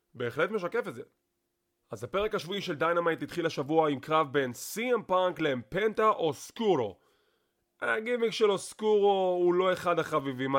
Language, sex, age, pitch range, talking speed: English, male, 30-49, 140-200 Hz, 130 wpm